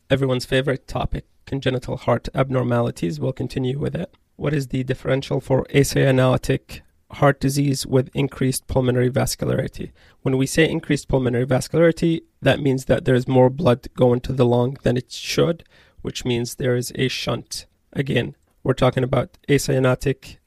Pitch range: 125-140 Hz